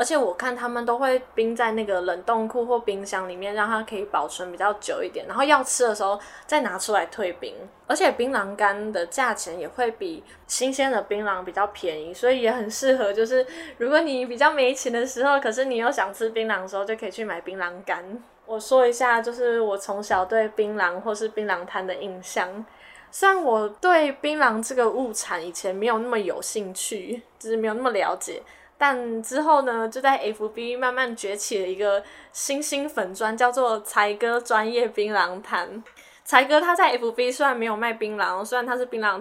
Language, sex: Chinese, female